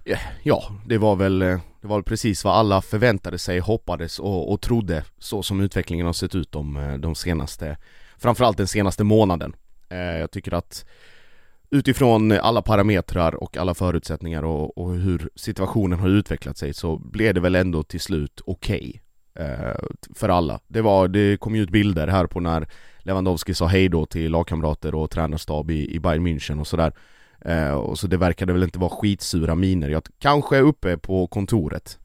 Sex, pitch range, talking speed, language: male, 80-100 Hz, 180 wpm, Swedish